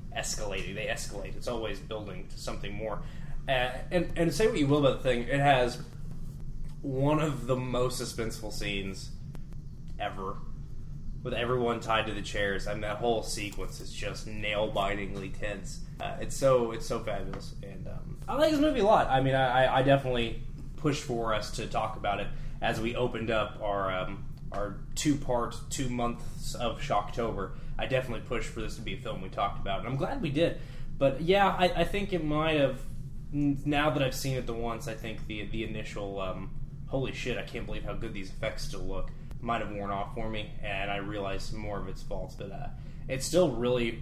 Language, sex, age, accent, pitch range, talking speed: English, male, 20-39, American, 110-145 Hz, 200 wpm